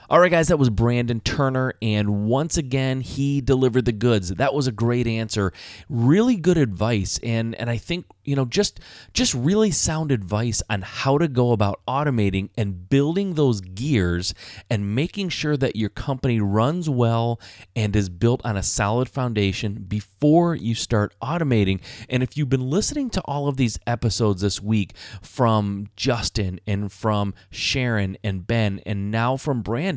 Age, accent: 30-49, American